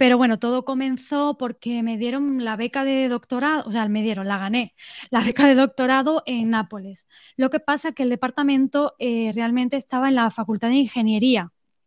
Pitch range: 230-275 Hz